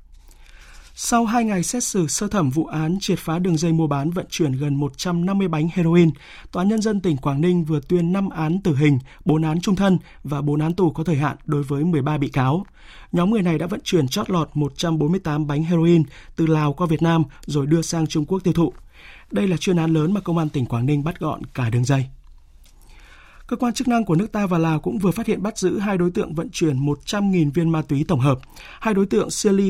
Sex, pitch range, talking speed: male, 145-180 Hz, 240 wpm